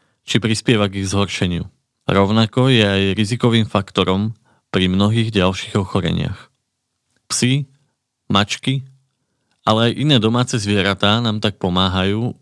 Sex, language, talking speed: male, Slovak, 115 wpm